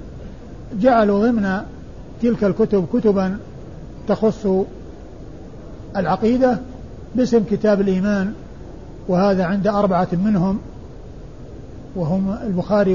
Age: 50-69